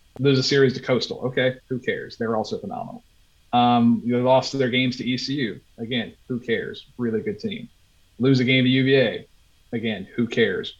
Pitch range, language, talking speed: 105-130 Hz, English, 180 wpm